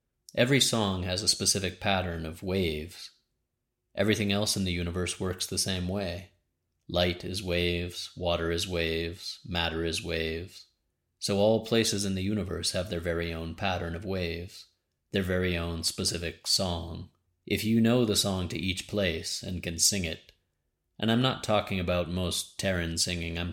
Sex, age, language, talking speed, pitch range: male, 30-49, English, 165 wpm, 85-105 Hz